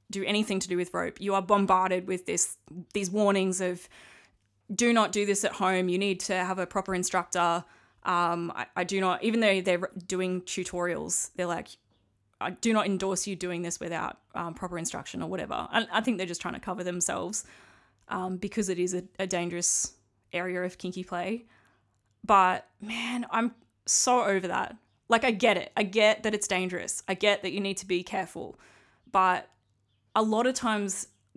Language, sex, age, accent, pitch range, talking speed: English, female, 20-39, Australian, 180-220 Hz, 190 wpm